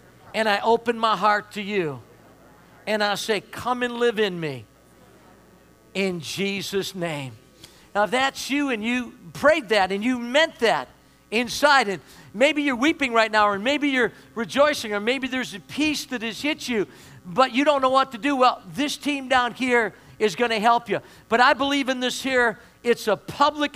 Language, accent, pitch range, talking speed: English, American, 210-260 Hz, 190 wpm